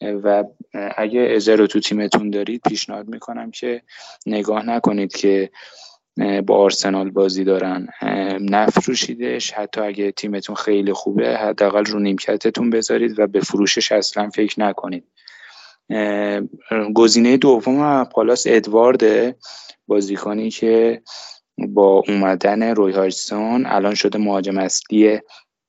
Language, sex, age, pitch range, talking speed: Persian, male, 20-39, 95-110 Hz, 110 wpm